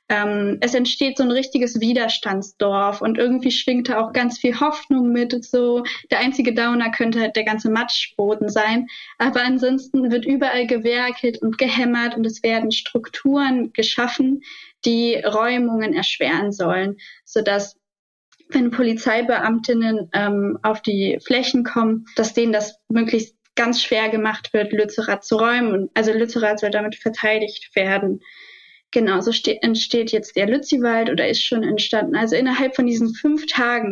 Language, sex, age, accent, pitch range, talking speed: German, female, 20-39, German, 220-255 Hz, 145 wpm